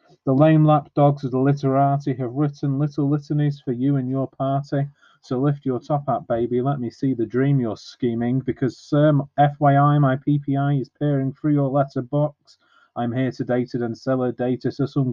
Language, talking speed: English, 210 wpm